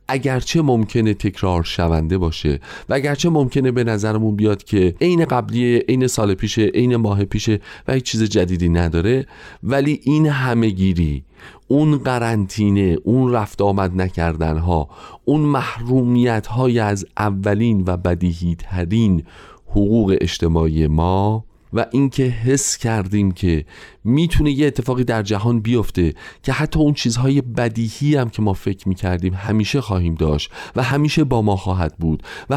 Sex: male